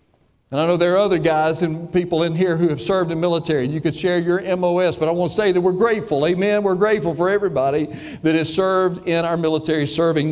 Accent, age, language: American, 50-69, English